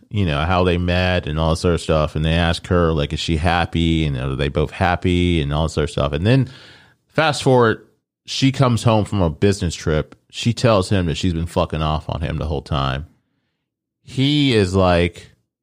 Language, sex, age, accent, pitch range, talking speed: English, male, 30-49, American, 80-110 Hz, 210 wpm